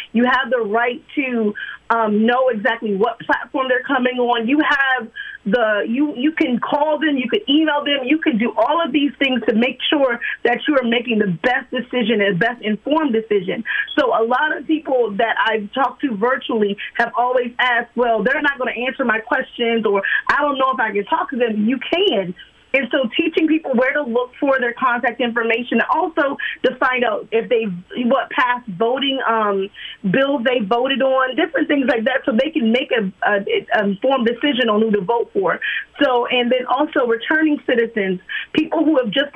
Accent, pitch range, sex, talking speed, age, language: American, 225-275 Hz, female, 200 wpm, 30-49, English